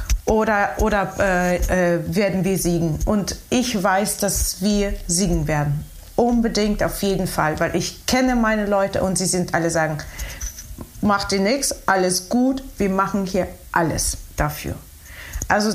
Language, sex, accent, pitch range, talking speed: German, female, German, 180-230 Hz, 150 wpm